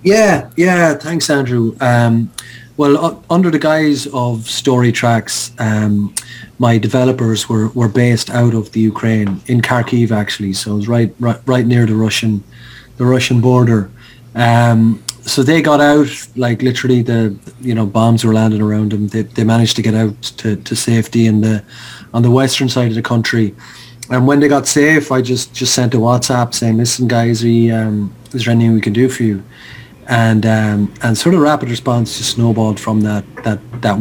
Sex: male